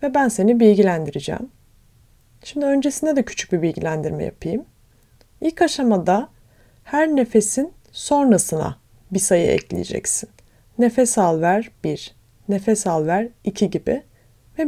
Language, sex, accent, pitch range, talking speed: Turkish, female, native, 170-260 Hz, 120 wpm